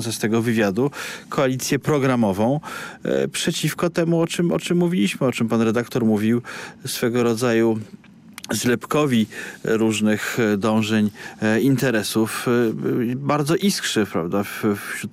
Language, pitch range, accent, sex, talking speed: Polish, 105-120 Hz, native, male, 105 wpm